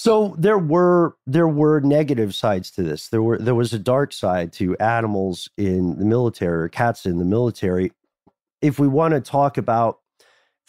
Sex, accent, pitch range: male, American, 105-140 Hz